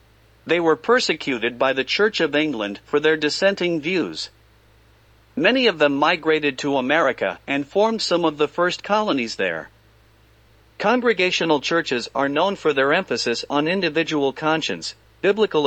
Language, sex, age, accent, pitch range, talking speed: English, male, 50-69, American, 110-175 Hz, 140 wpm